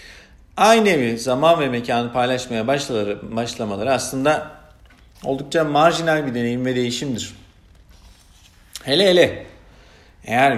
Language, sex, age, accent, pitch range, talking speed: Turkish, male, 50-69, native, 105-130 Hz, 95 wpm